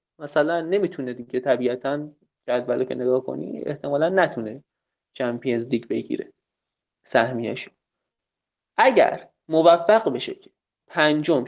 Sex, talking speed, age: male, 100 wpm, 30-49